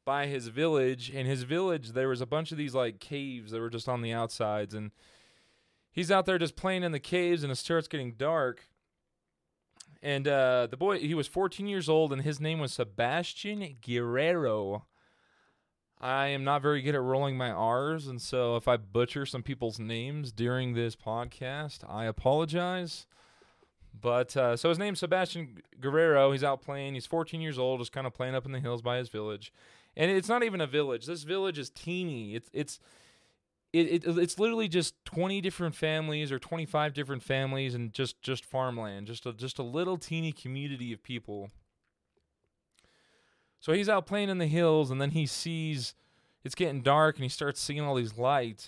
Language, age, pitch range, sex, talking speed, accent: English, 20-39, 125-165 Hz, male, 190 wpm, American